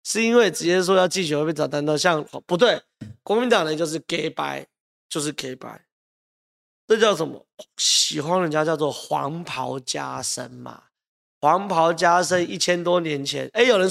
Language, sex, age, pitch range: Chinese, male, 30-49, 160-220 Hz